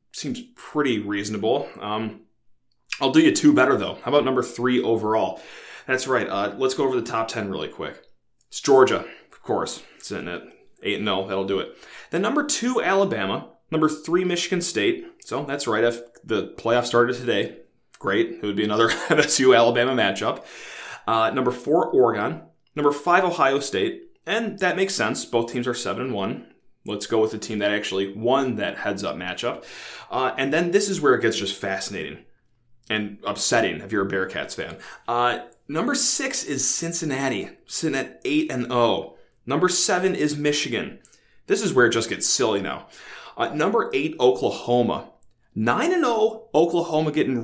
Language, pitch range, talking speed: English, 115-175 Hz, 170 wpm